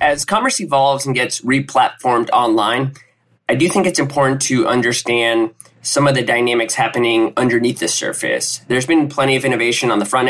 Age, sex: 20-39, male